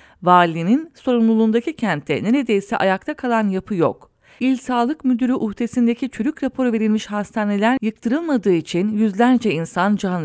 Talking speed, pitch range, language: 125 wpm, 195-255 Hz, English